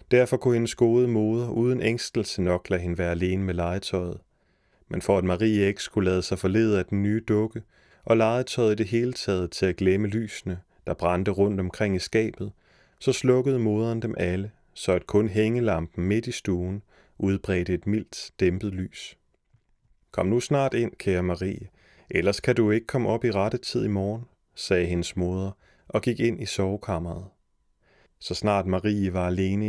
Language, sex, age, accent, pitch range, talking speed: Danish, male, 30-49, native, 95-115 Hz, 180 wpm